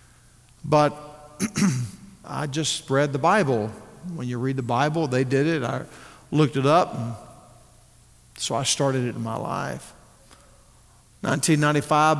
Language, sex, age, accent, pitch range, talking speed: English, male, 50-69, American, 130-175 Hz, 130 wpm